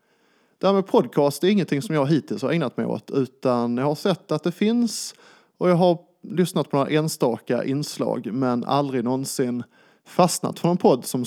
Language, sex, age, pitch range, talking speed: Swedish, male, 20-39, 125-180 Hz, 185 wpm